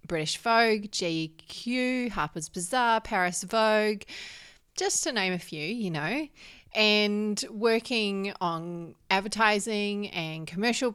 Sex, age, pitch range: female, 30-49, 170-215 Hz